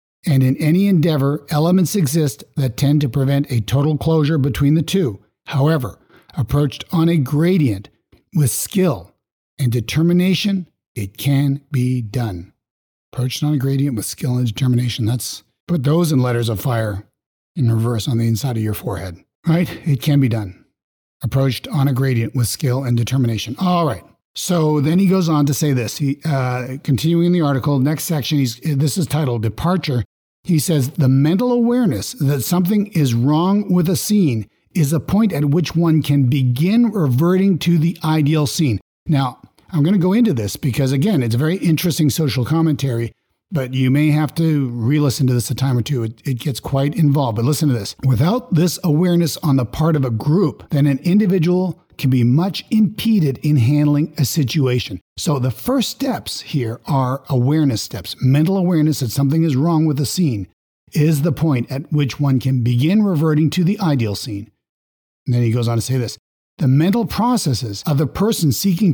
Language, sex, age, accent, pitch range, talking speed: English, male, 60-79, American, 125-165 Hz, 185 wpm